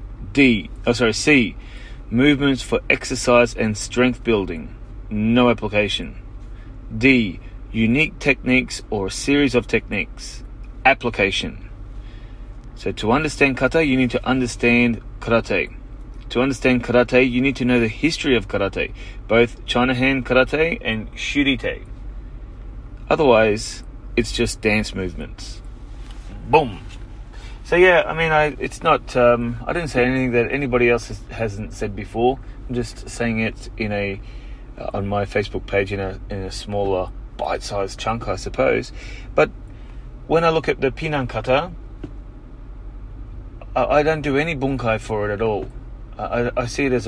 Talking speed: 145 wpm